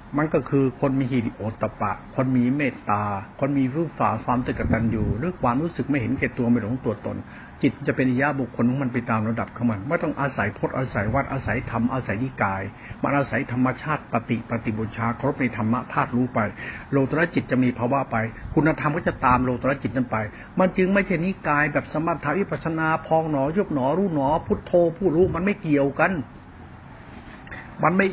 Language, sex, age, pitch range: Thai, male, 60-79, 125-170 Hz